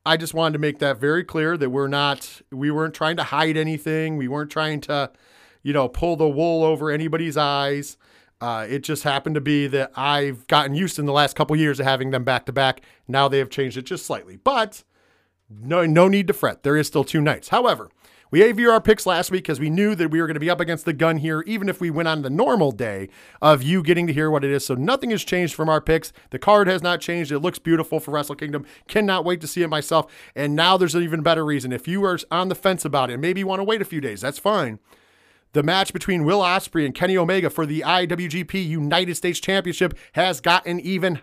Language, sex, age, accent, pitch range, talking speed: English, male, 40-59, American, 150-190 Hz, 250 wpm